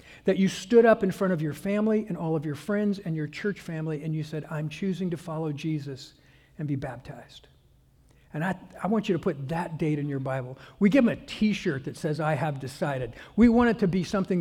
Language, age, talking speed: English, 60-79, 235 wpm